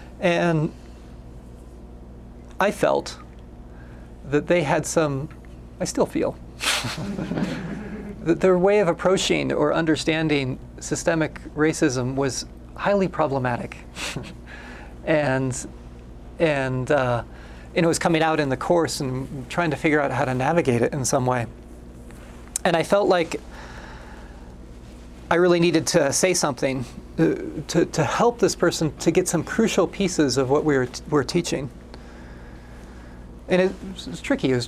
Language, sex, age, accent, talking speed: English, male, 30-49, American, 135 wpm